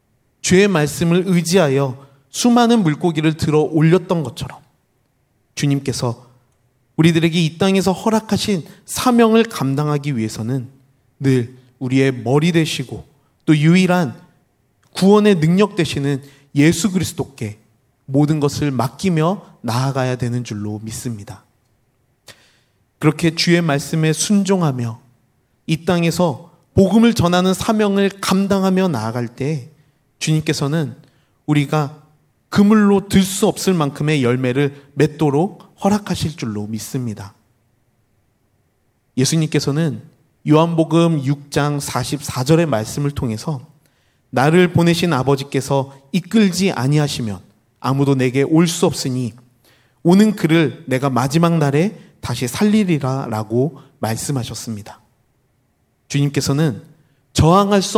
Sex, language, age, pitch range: male, Korean, 30-49, 125-170 Hz